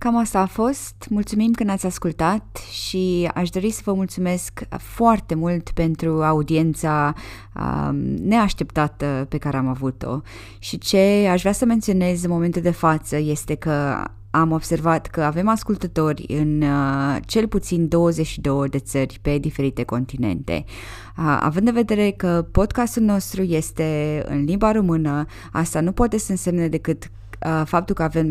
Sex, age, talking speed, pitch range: female, 20-39, 145 wpm, 145-175 Hz